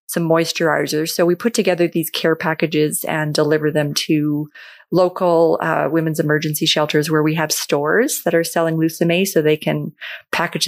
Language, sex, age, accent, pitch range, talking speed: English, female, 30-49, American, 155-175 Hz, 170 wpm